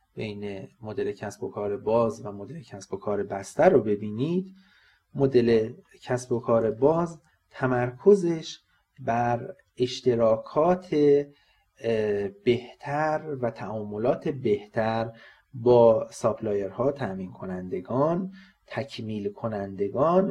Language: Persian